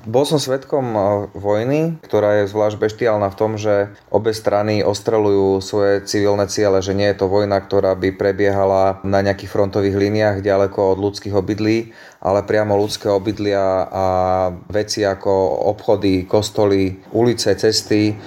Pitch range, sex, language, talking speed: 95-105 Hz, male, Slovak, 145 wpm